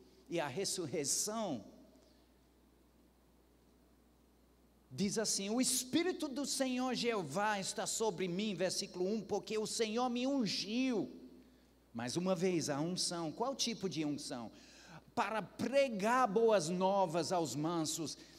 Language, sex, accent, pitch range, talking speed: Portuguese, male, Brazilian, 175-240 Hz, 115 wpm